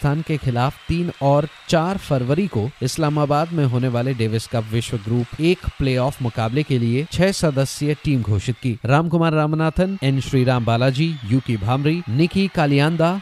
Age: 30-49